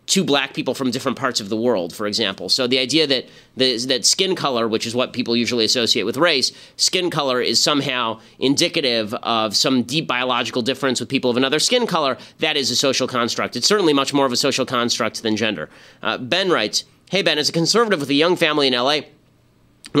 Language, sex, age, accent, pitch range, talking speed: English, male, 30-49, American, 120-145 Hz, 215 wpm